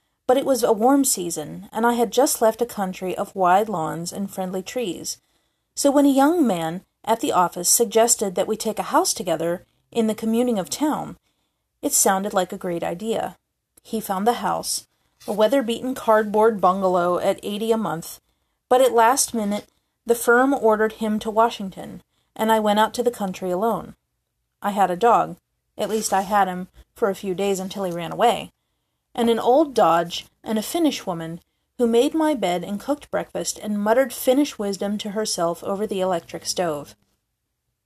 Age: 40-59